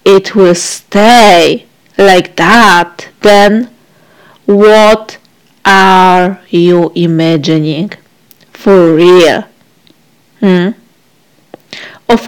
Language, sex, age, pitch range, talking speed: English, female, 40-59, 180-220 Hz, 70 wpm